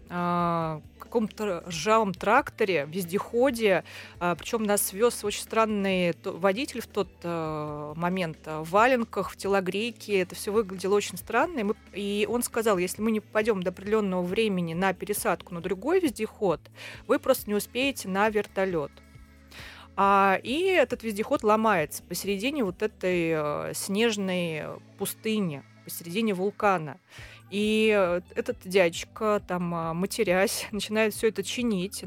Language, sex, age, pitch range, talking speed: Russian, female, 30-49, 180-220 Hz, 120 wpm